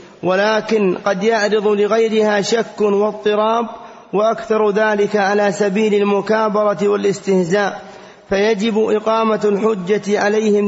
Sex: male